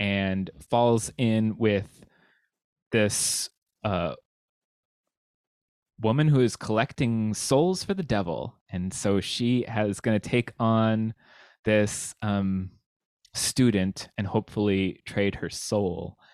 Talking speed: 105 wpm